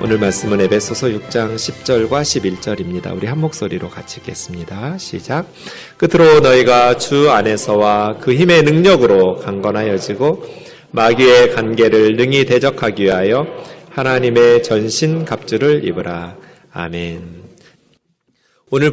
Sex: male